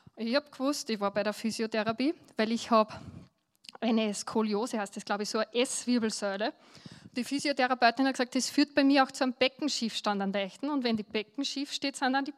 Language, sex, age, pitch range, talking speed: German, female, 20-39, 215-255 Hz, 205 wpm